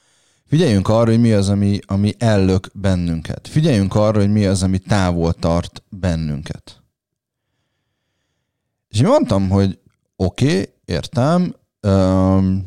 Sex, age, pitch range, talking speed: male, 30-49, 95-115 Hz, 120 wpm